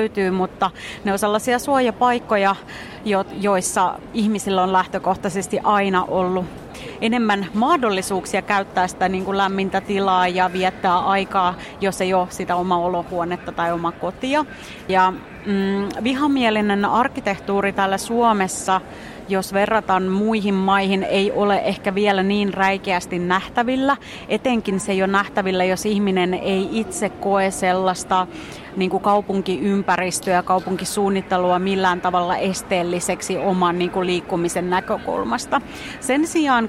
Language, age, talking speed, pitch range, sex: Finnish, 30-49, 115 wpm, 185-205 Hz, female